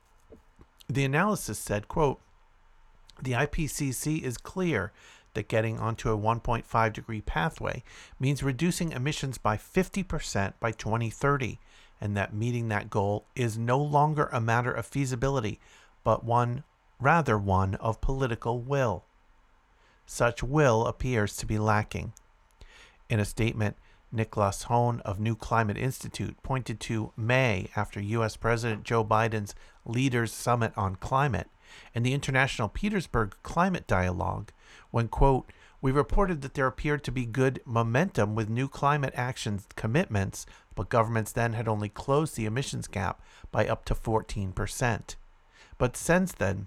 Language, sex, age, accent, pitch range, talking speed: English, male, 50-69, American, 105-135 Hz, 135 wpm